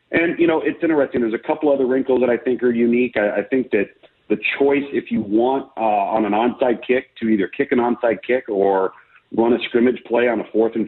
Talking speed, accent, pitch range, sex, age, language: 245 wpm, American, 110-135 Hz, male, 40-59, English